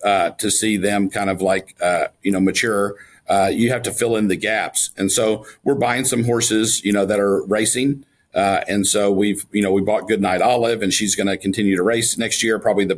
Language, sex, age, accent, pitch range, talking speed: English, male, 50-69, American, 100-115 Hz, 235 wpm